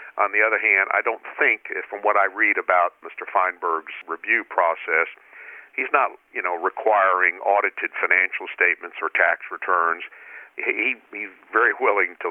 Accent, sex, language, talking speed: American, male, English, 155 wpm